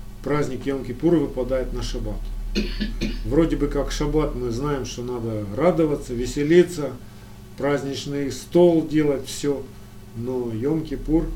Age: 50-69